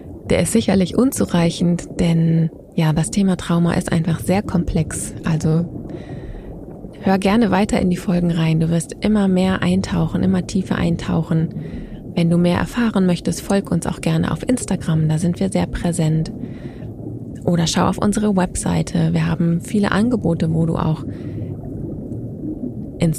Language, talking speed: German, 150 wpm